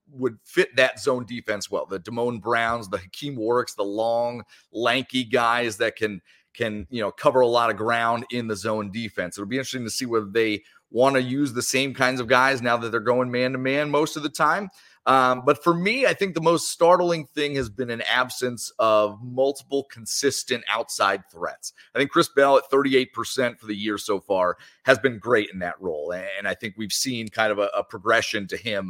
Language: English